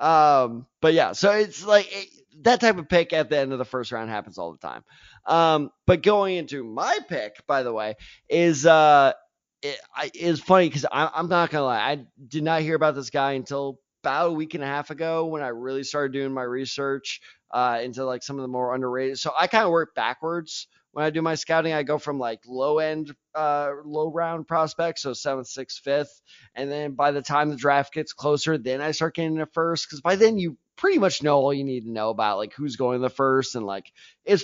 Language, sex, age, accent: English, male, 20-39, American